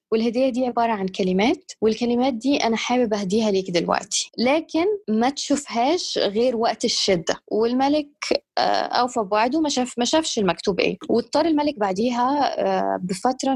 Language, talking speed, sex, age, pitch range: Arabic, 140 wpm, female, 20-39, 200-255 Hz